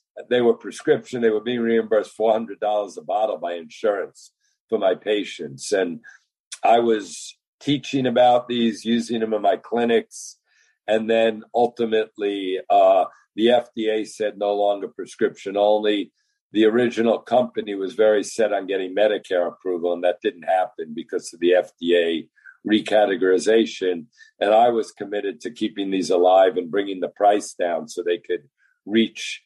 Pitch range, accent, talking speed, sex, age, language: 100-125 Hz, American, 155 wpm, male, 50-69, English